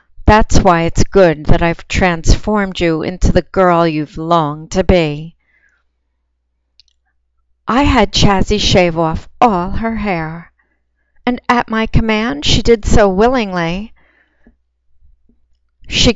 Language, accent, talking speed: English, American, 120 wpm